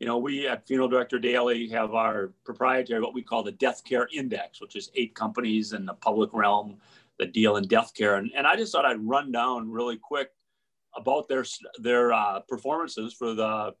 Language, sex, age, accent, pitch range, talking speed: English, male, 40-59, American, 115-140 Hz, 205 wpm